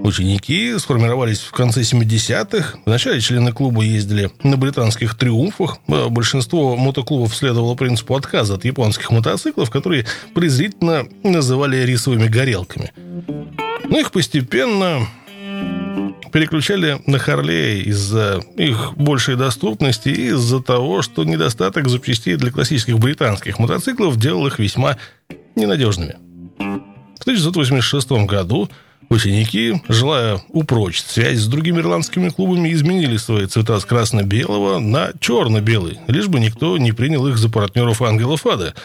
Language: Russian